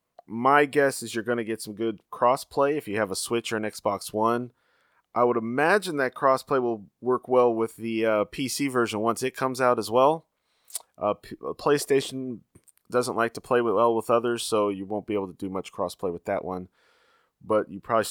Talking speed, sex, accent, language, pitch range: 210 wpm, male, American, English, 110-135 Hz